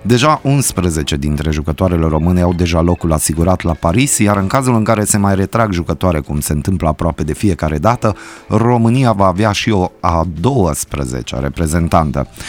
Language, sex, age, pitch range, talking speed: Romanian, male, 30-49, 80-105 Hz, 165 wpm